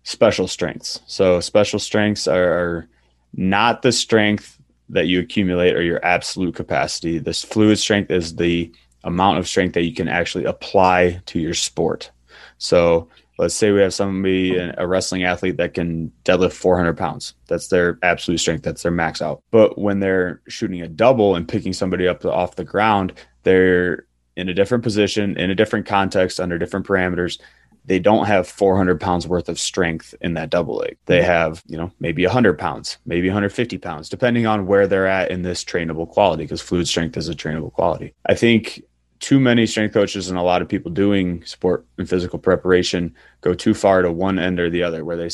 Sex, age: male, 20-39